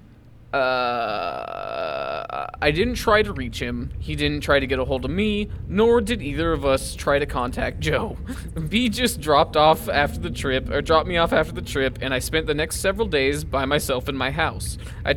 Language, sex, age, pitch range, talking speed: English, male, 20-39, 125-205 Hz, 205 wpm